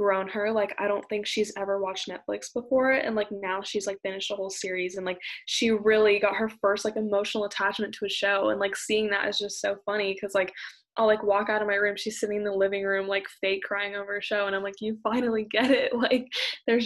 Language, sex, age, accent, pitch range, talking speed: English, female, 10-29, American, 195-215 Hz, 255 wpm